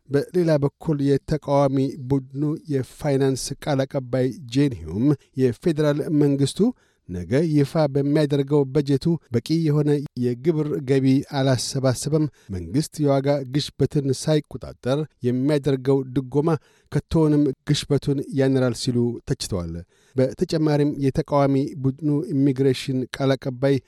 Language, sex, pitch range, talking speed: Amharic, male, 135-150 Hz, 85 wpm